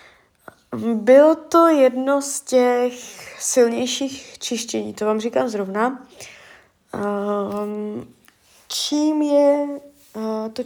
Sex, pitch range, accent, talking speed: female, 200-245 Hz, native, 80 wpm